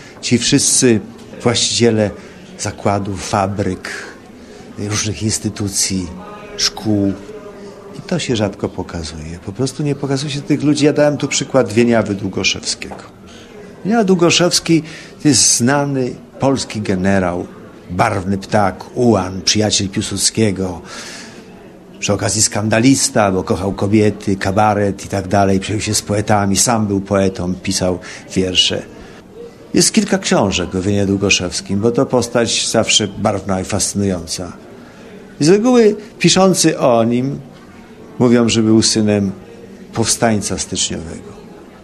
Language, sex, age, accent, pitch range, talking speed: Polish, male, 50-69, native, 100-135 Hz, 120 wpm